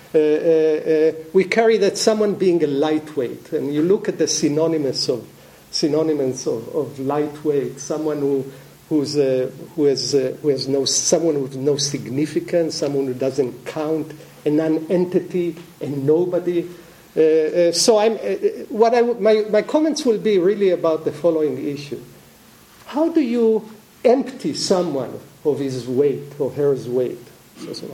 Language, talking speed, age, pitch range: English, 155 wpm, 50-69, 140-190 Hz